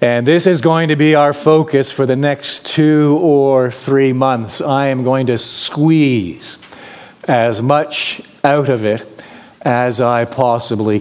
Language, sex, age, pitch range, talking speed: English, male, 40-59, 140-180 Hz, 155 wpm